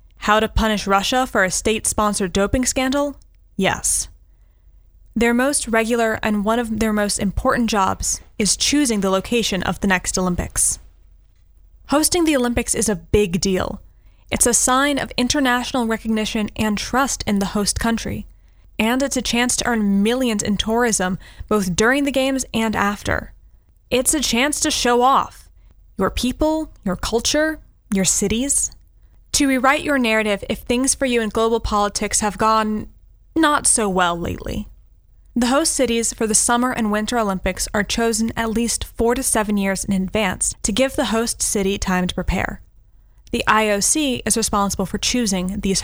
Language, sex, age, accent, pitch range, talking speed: English, female, 10-29, American, 200-245 Hz, 165 wpm